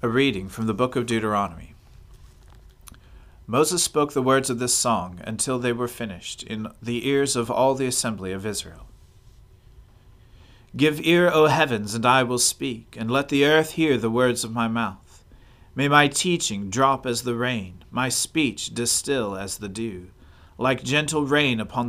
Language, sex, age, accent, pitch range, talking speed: English, male, 40-59, American, 100-140 Hz, 170 wpm